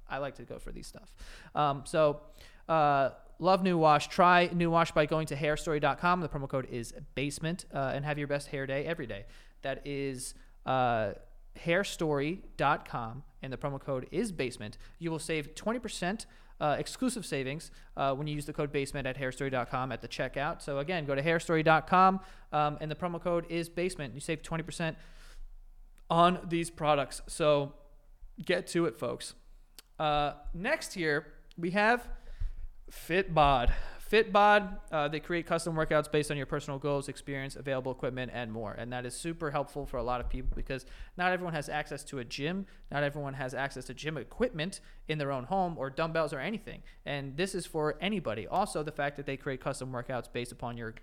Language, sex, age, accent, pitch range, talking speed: English, male, 30-49, American, 135-165 Hz, 185 wpm